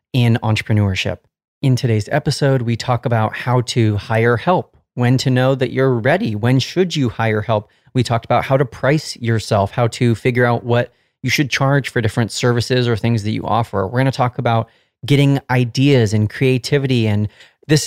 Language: English